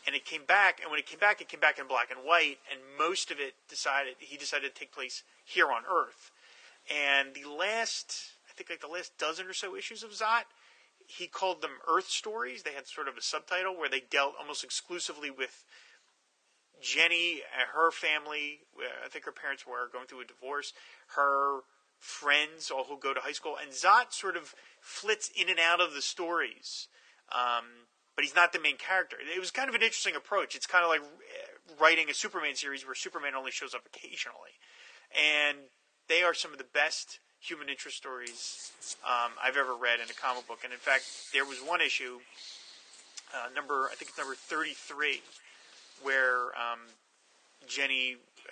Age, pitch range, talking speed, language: 30-49, 125-170 Hz, 190 wpm, English